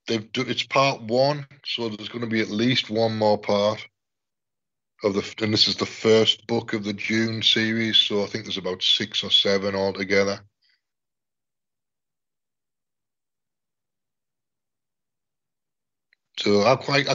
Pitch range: 105-125 Hz